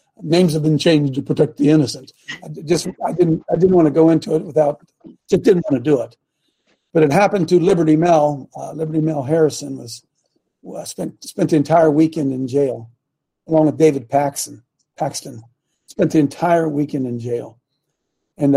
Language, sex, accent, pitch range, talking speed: English, male, American, 145-190 Hz, 185 wpm